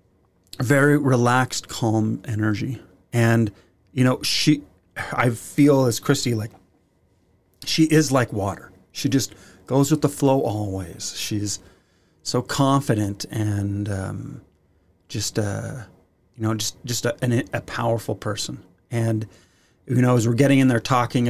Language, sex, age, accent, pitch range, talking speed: English, male, 30-49, American, 100-125 Hz, 135 wpm